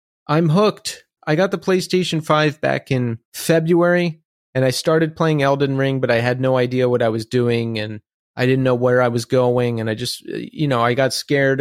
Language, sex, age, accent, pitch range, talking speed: English, male, 30-49, American, 125-155 Hz, 210 wpm